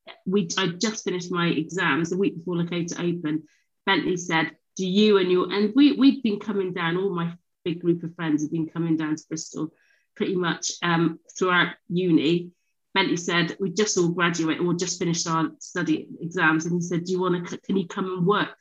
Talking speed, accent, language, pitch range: 200 wpm, British, English, 165-190 Hz